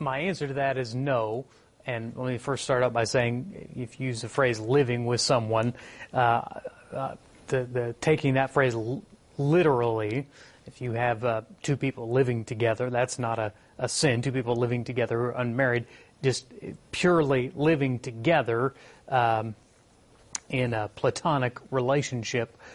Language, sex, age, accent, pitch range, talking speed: English, male, 30-49, American, 120-140 Hz, 155 wpm